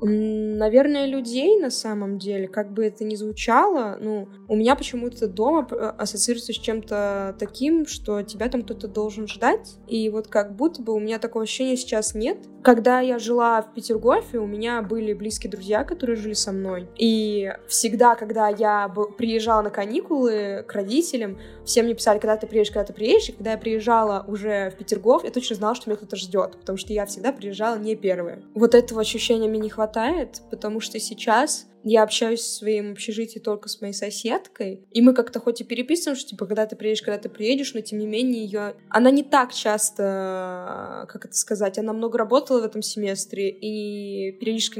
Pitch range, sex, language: 210-235 Hz, female, Russian